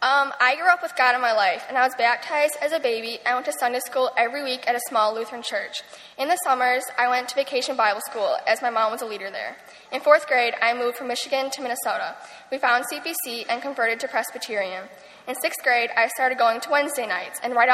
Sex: female